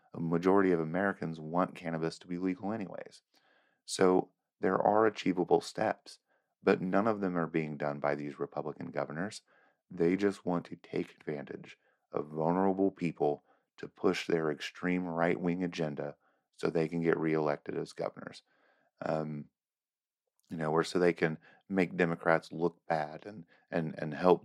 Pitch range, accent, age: 75-90 Hz, American, 40-59